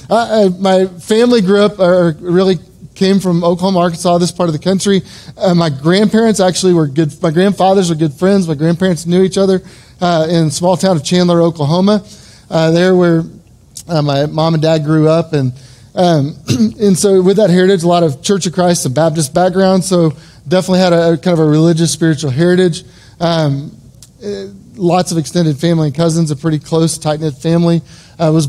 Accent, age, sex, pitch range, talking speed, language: American, 30-49, male, 155-185 Hz, 195 wpm, English